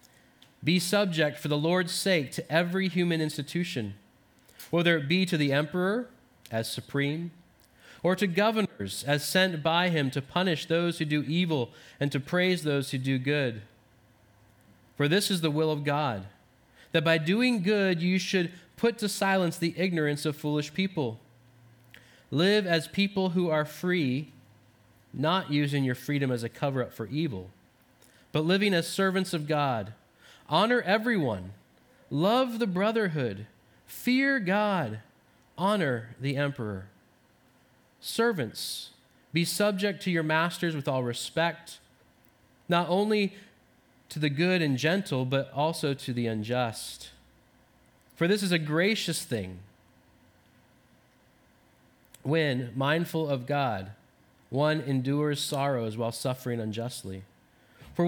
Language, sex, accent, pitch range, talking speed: English, male, American, 125-180 Hz, 130 wpm